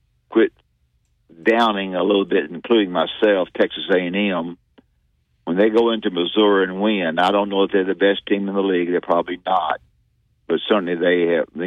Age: 60-79